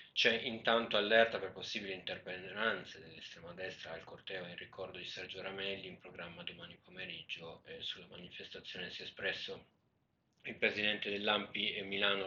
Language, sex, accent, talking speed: Italian, male, native, 150 wpm